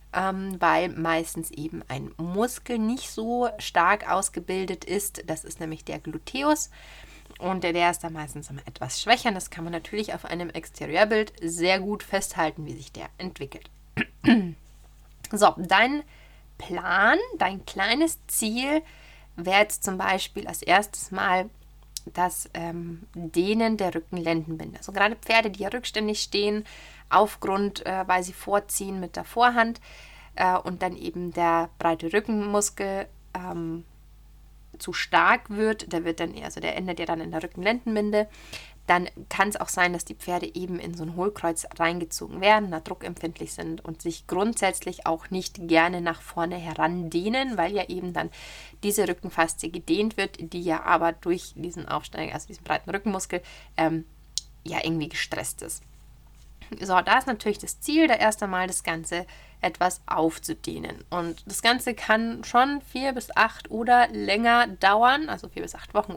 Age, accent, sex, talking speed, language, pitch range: 20-39, German, female, 160 wpm, German, 170-210 Hz